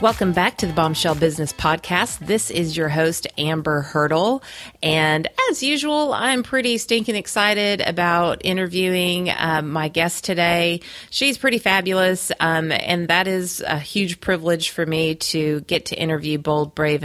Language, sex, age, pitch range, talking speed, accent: English, female, 30-49, 155-185 Hz, 155 wpm, American